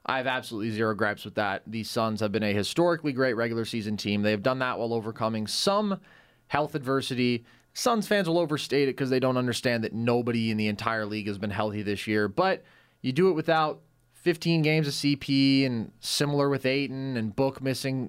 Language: English